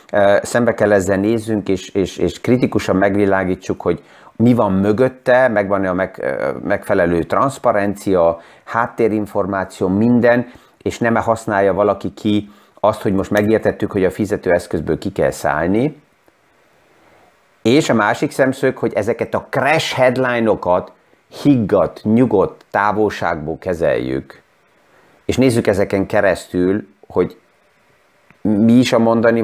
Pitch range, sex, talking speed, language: 95-115 Hz, male, 115 wpm, Hungarian